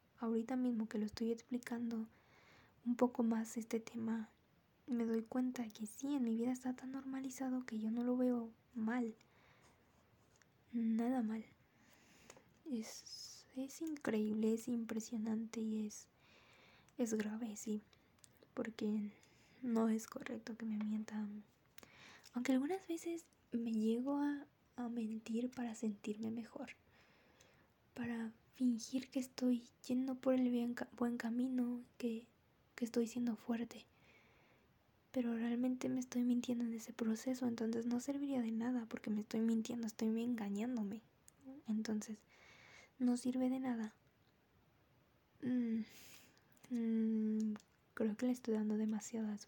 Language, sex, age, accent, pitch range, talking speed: Spanish, female, 10-29, Mexican, 225-250 Hz, 130 wpm